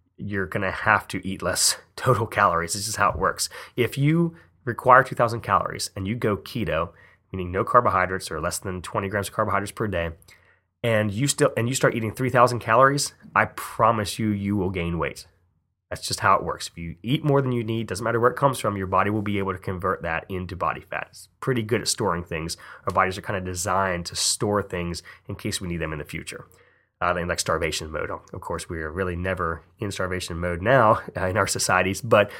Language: English